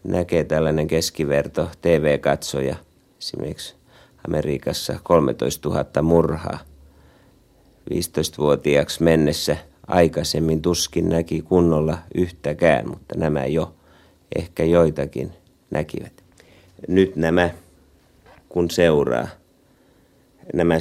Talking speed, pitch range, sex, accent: 80 wpm, 75-85 Hz, male, native